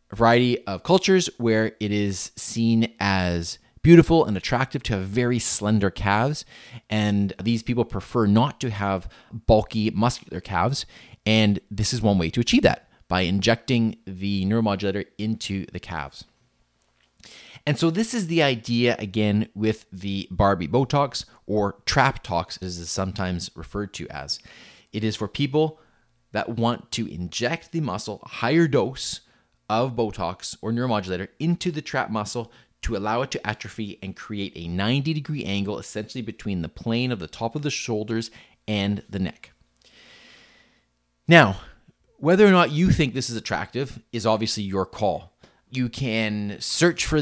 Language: English